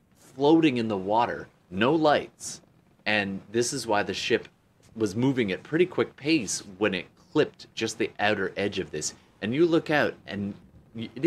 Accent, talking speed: American, 175 wpm